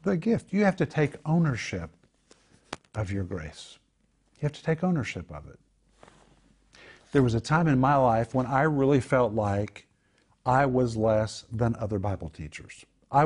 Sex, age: male, 50-69